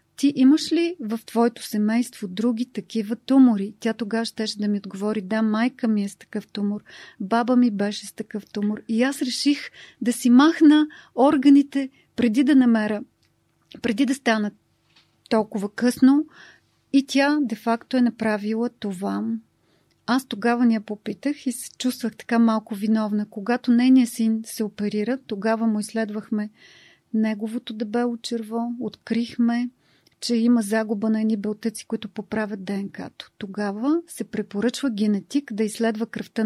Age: 30-49